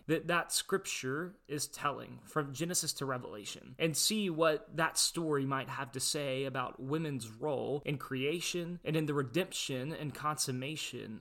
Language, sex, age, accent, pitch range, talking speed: English, male, 20-39, American, 130-155 Hz, 155 wpm